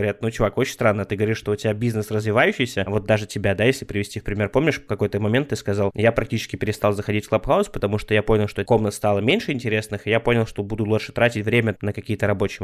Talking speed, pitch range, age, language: 250 wpm, 105-130 Hz, 20-39, Russian